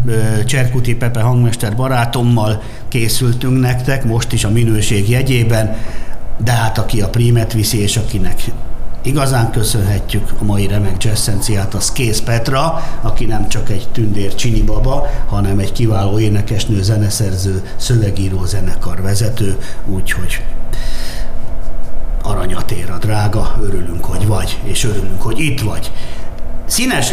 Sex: male